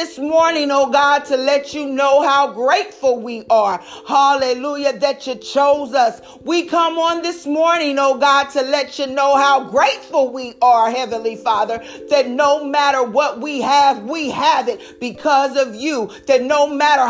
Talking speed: 170 wpm